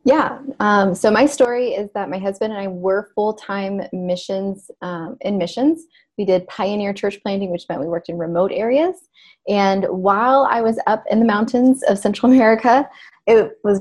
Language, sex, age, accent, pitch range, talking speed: English, female, 20-39, American, 180-220 Hz, 185 wpm